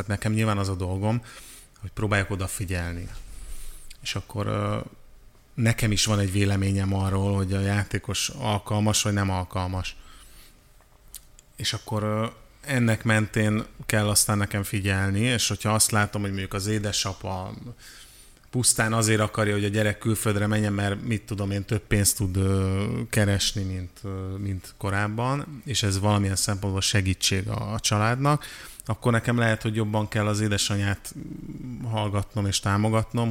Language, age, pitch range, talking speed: Hungarian, 30-49, 100-110 Hz, 135 wpm